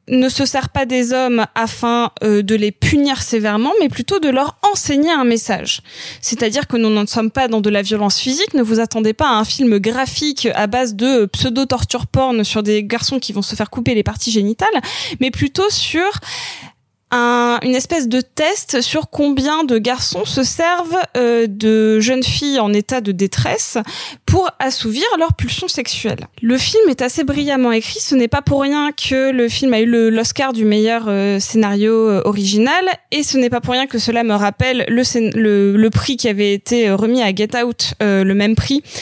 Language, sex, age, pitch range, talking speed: French, female, 20-39, 215-270 Hz, 200 wpm